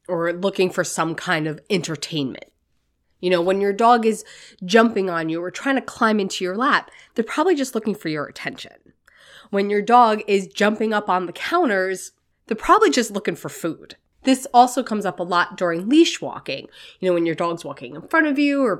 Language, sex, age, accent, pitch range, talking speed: English, female, 20-39, American, 175-235 Hz, 205 wpm